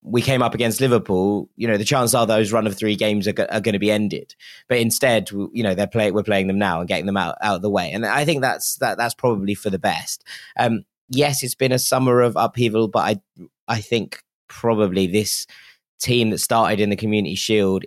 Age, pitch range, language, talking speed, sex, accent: 20-39, 95-115 Hz, English, 235 wpm, male, British